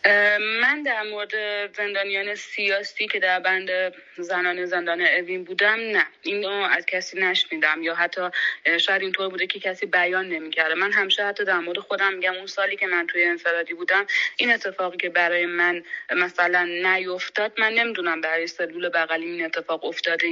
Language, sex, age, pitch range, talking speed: Persian, female, 30-49, 170-205 Hz, 170 wpm